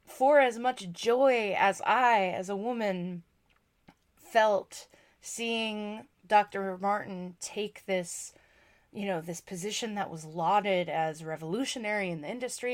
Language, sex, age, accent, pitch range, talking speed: English, female, 20-39, American, 175-225 Hz, 125 wpm